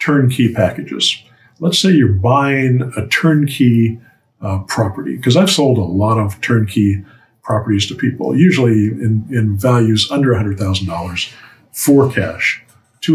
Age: 50-69